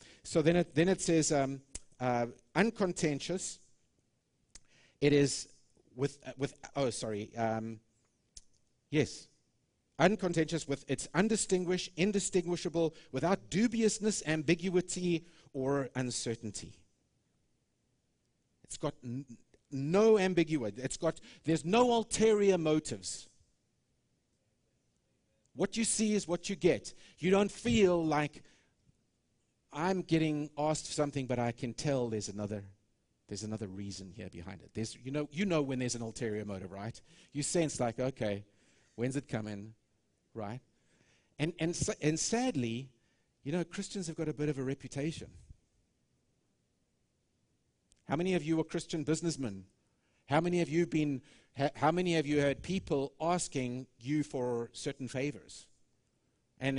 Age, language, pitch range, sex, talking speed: 50-69, English, 120-170 Hz, male, 135 wpm